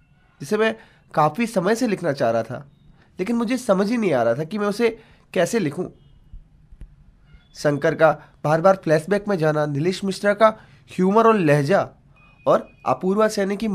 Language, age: Hindi, 20-39